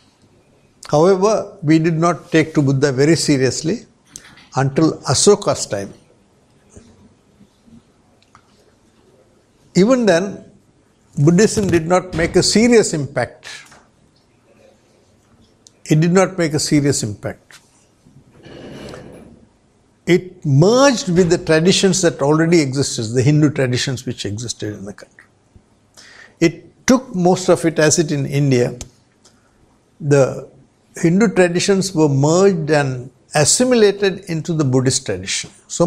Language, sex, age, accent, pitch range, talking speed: English, male, 70-89, Indian, 140-185 Hz, 110 wpm